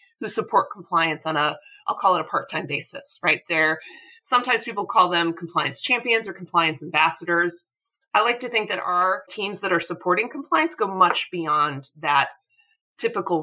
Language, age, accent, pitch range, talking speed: English, 30-49, American, 165-275 Hz, 175 wpm